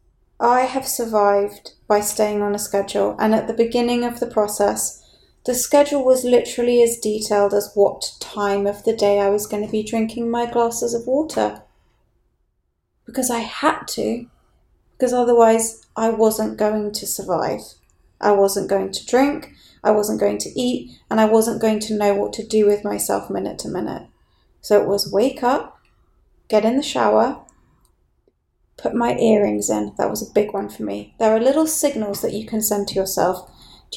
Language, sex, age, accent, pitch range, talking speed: English, female, 30-49, British, 195-240 Hz, 180 wpm